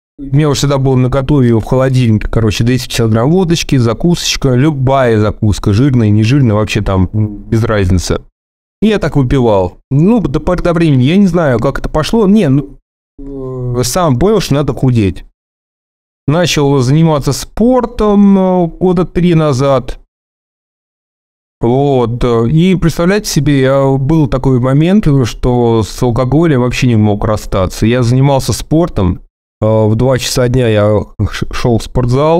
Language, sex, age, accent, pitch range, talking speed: Russian, male, 30-49, native, 110-140 Hz, 140 wpm